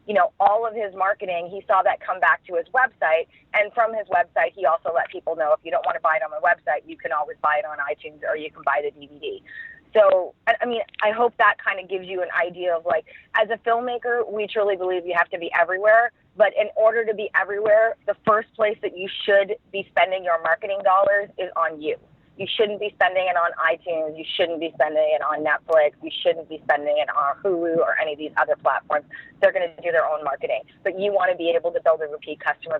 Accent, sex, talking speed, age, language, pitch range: American, female, 250 wpm, 20-39, English, 160-220 Hz